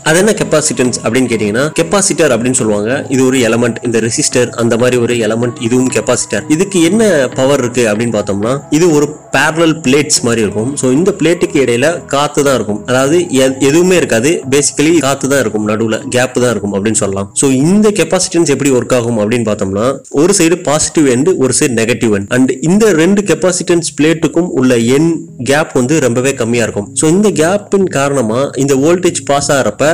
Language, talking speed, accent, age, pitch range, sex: Tamil, 95 wpm, native, 30-49, 120-160 Hz, male